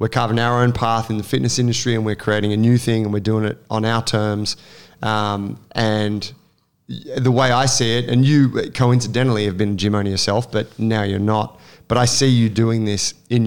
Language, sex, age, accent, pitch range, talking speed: English, male, 20-39, Australian, 105-125 Hz, 220 wpm